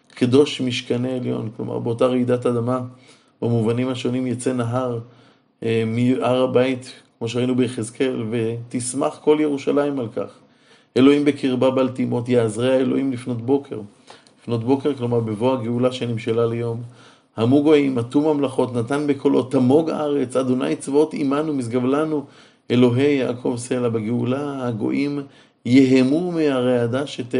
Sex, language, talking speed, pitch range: male, Hebrew, 125 wpm, 120-140 Hz